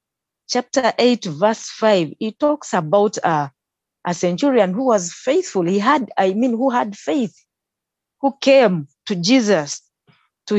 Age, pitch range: 40-59, 185-260 Hz